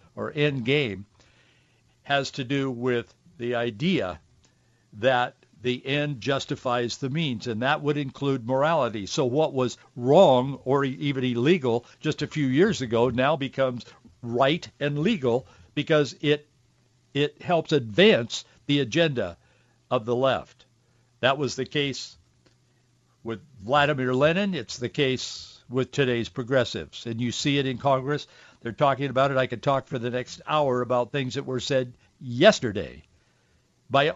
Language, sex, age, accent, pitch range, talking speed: English, male, 60-79, American, 120-145 Hz, 150 wpm